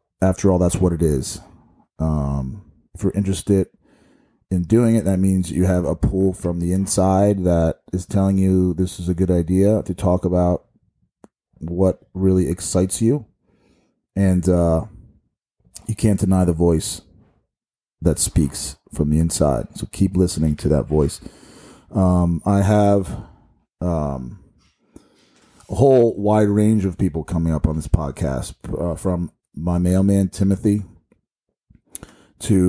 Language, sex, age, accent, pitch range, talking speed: English, male, 30-49, American, 85-100 Hz, 140 wpm